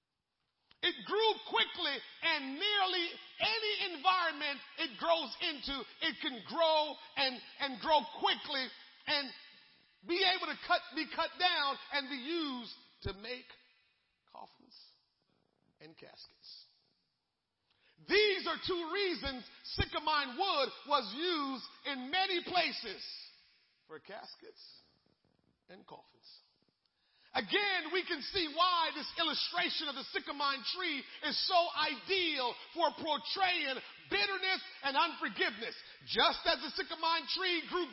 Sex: male